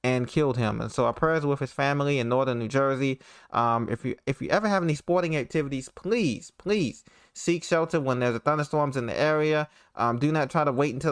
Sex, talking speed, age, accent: male, 225 wpm, 20-39, American